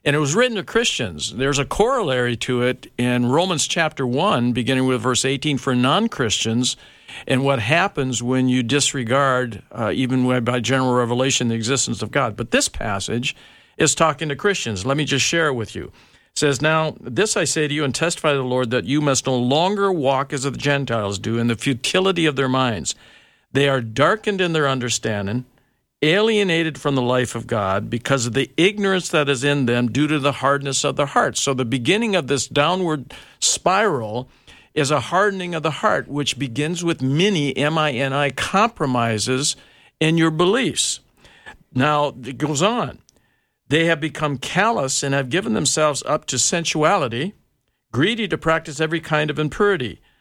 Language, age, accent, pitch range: English, 50-69, American, 130-160 Hz